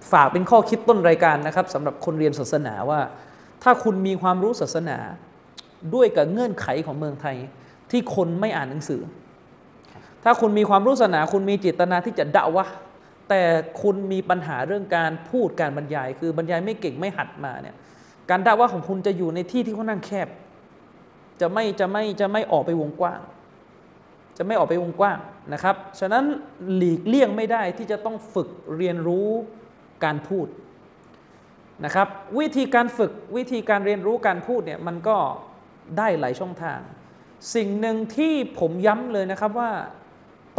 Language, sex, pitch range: Thai, male, 170-220 Hz